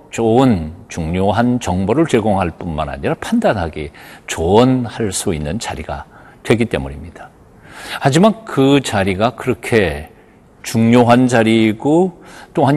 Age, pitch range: 50-69, 95-140 Hz